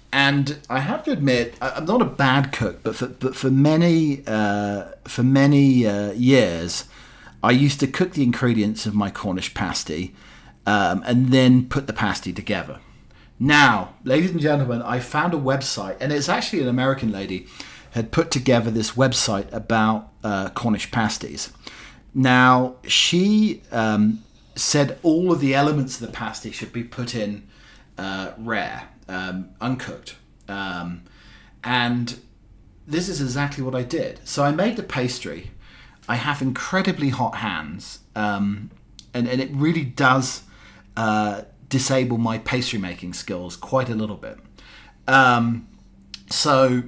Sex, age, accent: male, 40-59, British